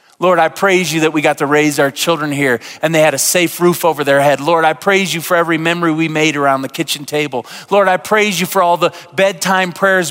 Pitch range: 150-185 Hz